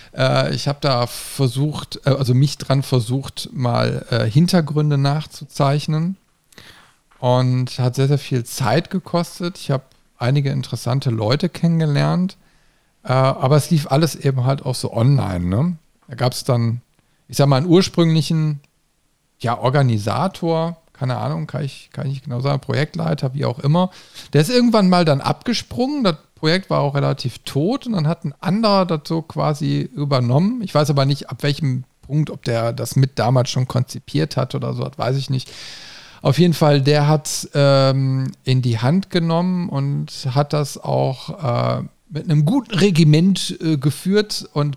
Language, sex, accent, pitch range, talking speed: German, male, German, 130-165 Hz, 160 wpm